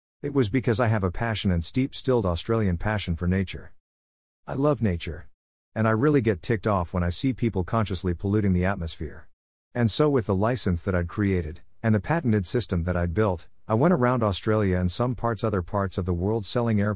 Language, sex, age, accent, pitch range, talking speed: English, male, 50-69, American, 90-115 Hz, 210 wpm